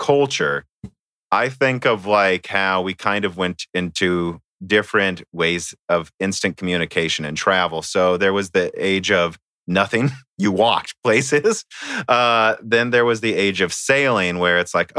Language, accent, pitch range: English, American, 100-130 Hz